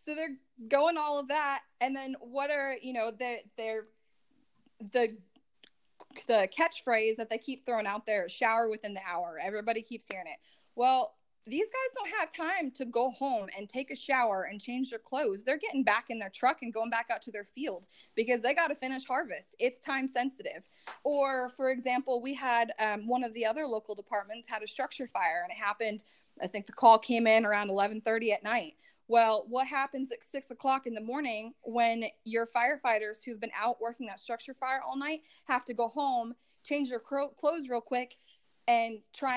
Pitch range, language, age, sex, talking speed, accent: 225-275 Hz, English, 20-39, female, 200 wpm, American